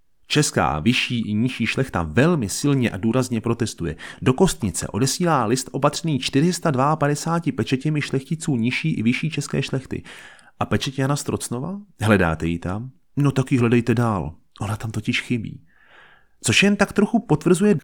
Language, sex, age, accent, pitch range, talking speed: Czech, male, 30-49, native, 110-150 Hz, 140 wpm